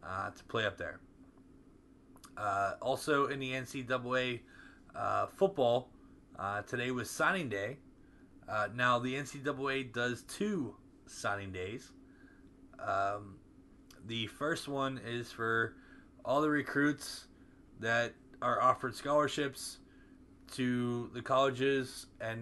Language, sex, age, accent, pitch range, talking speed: English, male, 20-39, American, 120-145 Hz, 110 wpm